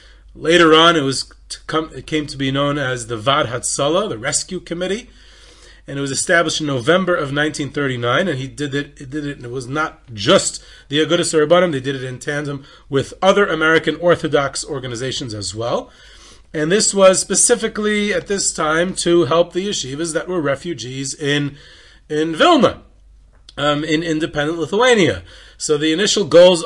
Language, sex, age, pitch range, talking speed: English, male, 30-49, 135-170 Hz, 175 wpm